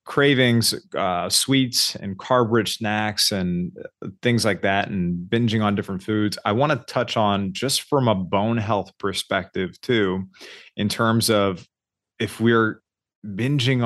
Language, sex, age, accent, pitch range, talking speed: English, male, 30-49, American, 100-115 Hz, 145 wpm